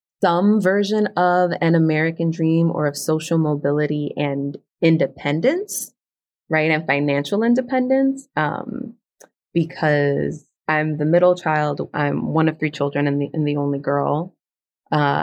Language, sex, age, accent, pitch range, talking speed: English, female, 20-39, American, 145-185 Hz, 135 wpm